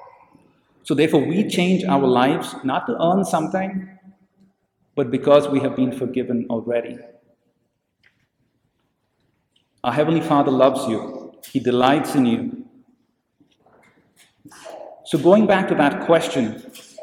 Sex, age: male, 50-69